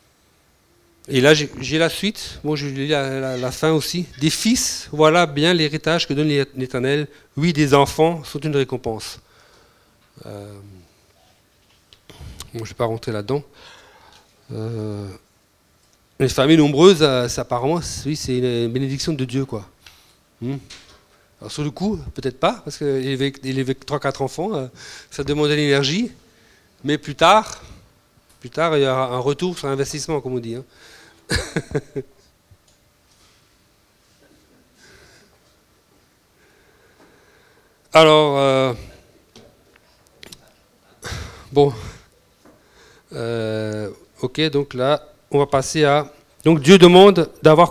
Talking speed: 125 wpm